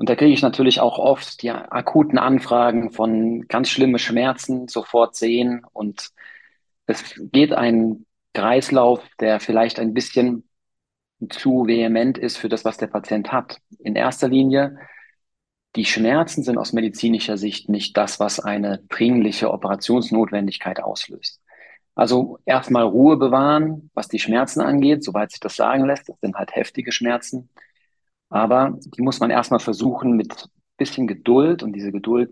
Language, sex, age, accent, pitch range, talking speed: German, male, 40-59, German, 105-125 Hz, 150 wpm